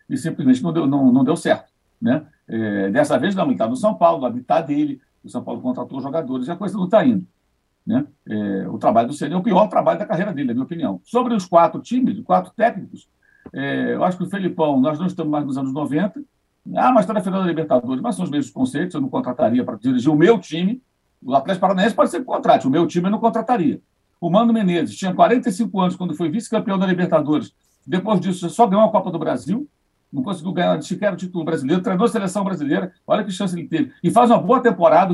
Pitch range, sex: 170-240 Hz, male